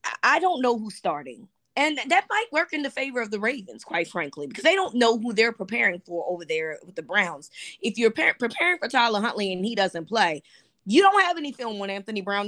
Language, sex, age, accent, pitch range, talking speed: English, female, 20-39, American, 205-290 Hz, 235 wpm